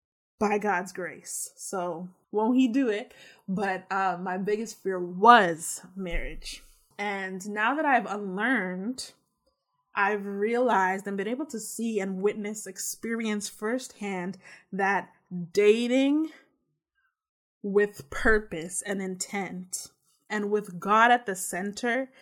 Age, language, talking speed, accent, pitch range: 20-39, English, 115 wpm, American, 190-215 Hz